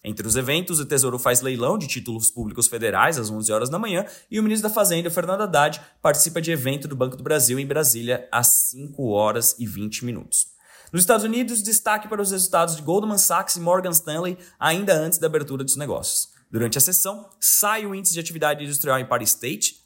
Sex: male